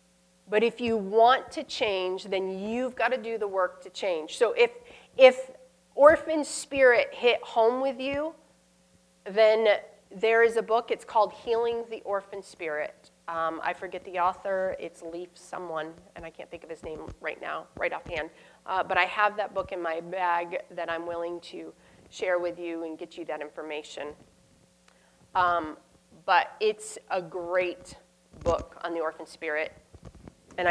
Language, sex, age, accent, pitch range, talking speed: English, female, 30-49, American, 160-225 Hz, 170 wpm